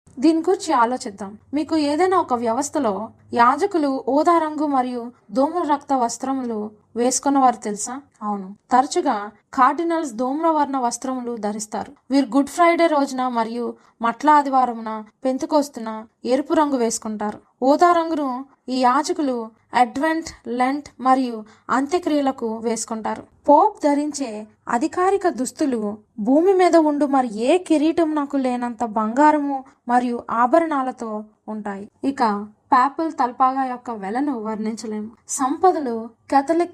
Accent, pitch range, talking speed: native, 235-295 Hz, 105 wpm